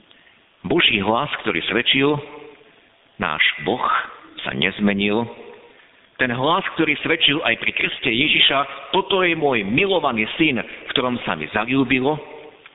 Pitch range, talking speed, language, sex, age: 110-170 Hz, 120 wpm, Slovak, male, 50-69